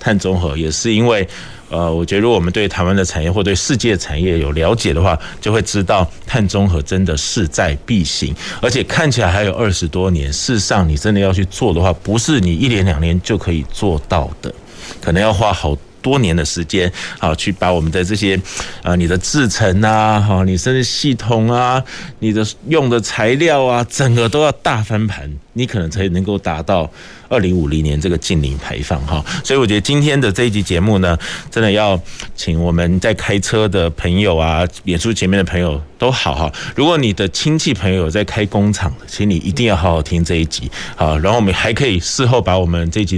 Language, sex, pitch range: Chinese, male, 85-110 Hz